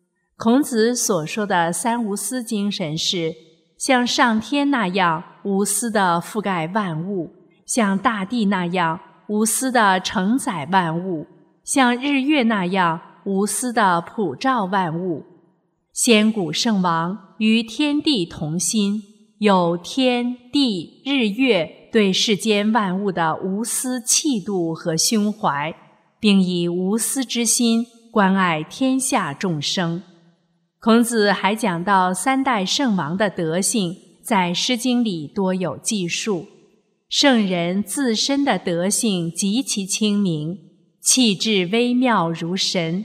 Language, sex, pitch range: Chinese, female, 175-230 Hz